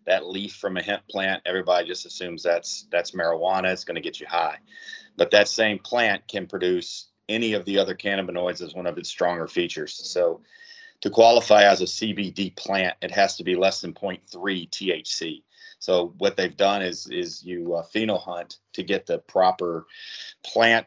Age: 40-59